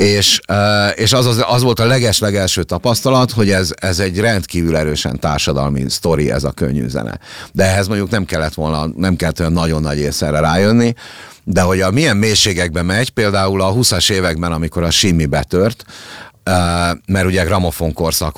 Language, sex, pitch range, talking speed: Hungarian, male, 80-100 Hz, 175 wpm